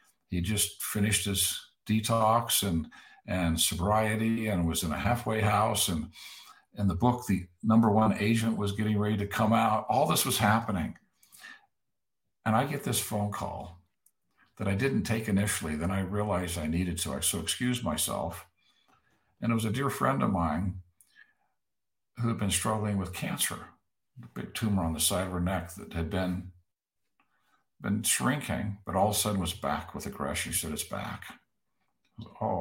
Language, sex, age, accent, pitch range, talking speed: English, male, 60-79, American, 90-110 Hz, 175 wpm